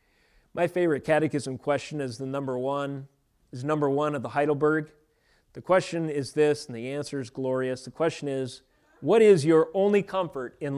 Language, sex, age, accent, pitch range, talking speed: English, male, 40-59, American, 140-195 Hz, 180 wpm